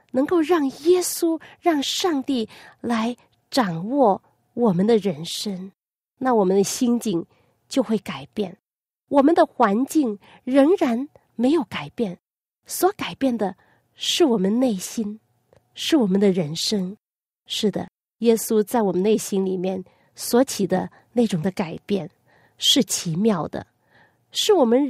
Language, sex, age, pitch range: Chinese, female, 30-49, 190-250 Hz